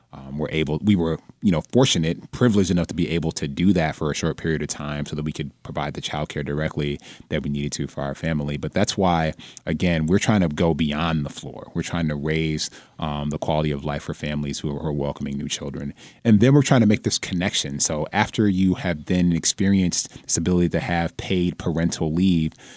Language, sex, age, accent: English, male, 30-49, American